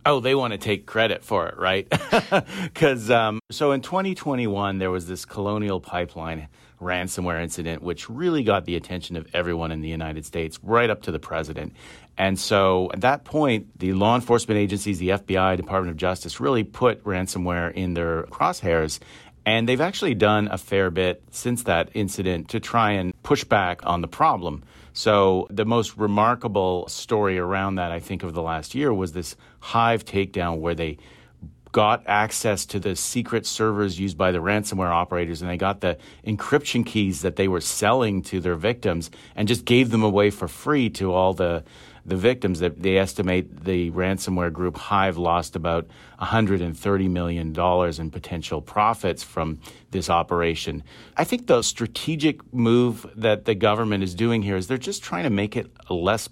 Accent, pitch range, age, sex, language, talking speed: American, 85-105 Hz, 40-59, male, English, 175 wpm